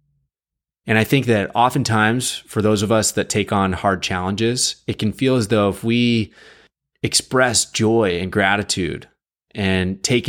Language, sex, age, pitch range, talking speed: English, male, 20-39, 90-110 Hz, 155 wpm